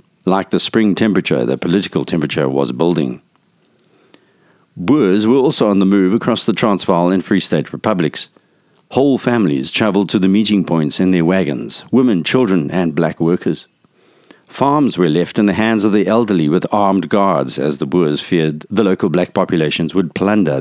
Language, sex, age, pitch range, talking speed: English, male, 50-69, 85-105 Hz, 170 wpm